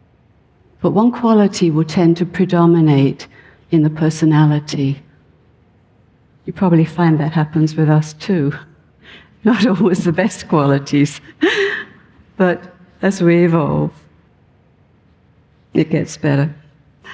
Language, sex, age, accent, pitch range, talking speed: English, female, 60-79, British, 145-170 Hz, 105 wpm